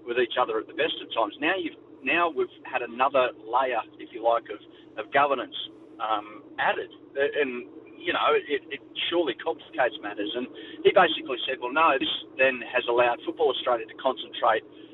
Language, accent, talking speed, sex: English, Australian, 180 wpm, male